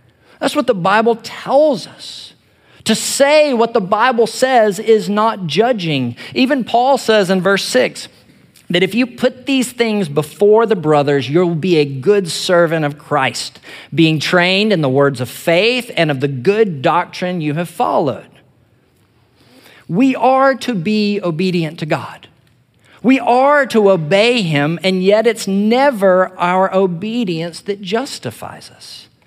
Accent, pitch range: American, 155-230 Hz